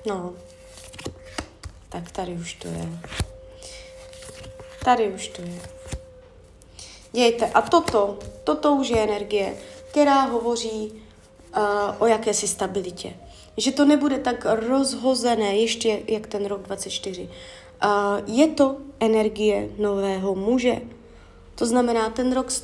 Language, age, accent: Czech, 20-39, native